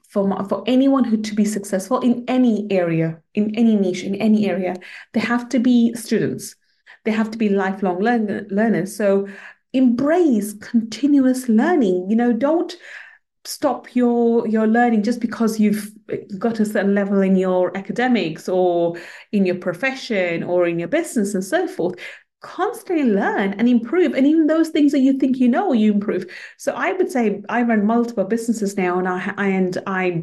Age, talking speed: 30-49, 175 wpm